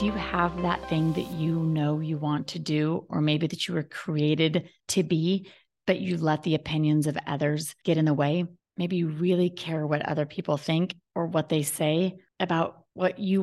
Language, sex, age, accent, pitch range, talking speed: English, female, 30-49, American, 155-185 Hz, 200 wpm